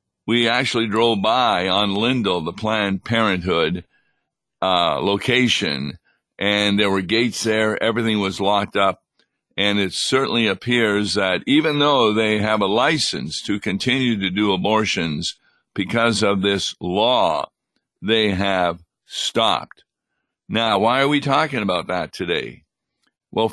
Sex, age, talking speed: male, 50-69, 135 wpm